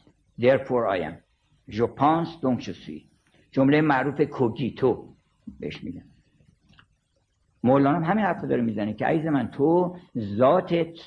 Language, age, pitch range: Persian, 50-69, 130-175 Hz